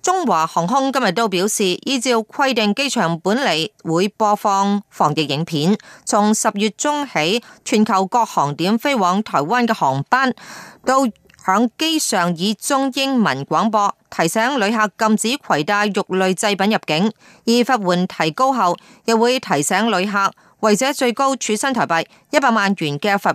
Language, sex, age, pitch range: Chinese, female, 30-49, 185-235 Hz